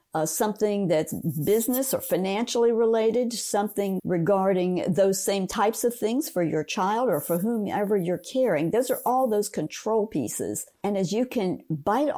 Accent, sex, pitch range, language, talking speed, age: American, female, 180-235 Hz, English, 165 wpm, 60-79